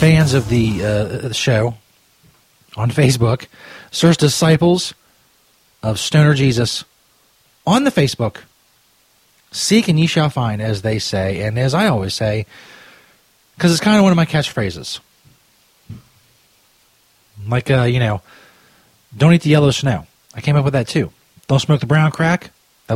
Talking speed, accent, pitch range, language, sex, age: 145 wpm, American, 115-170 Hz, English, male, 40-59